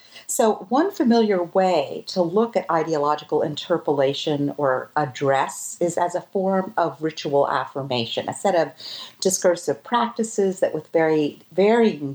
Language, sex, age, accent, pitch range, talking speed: English, female, 50-69, American, 150-190 Hz, 130 wpm